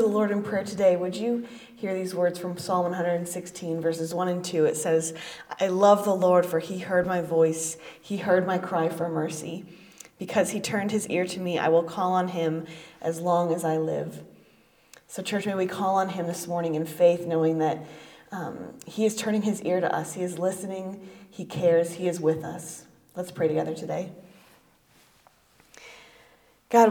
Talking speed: 190 wpm